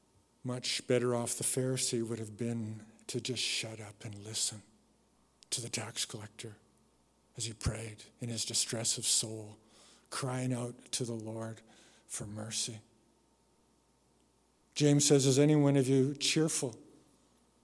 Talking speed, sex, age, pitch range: 140 wpm, male, 50-69, 120-150 Hz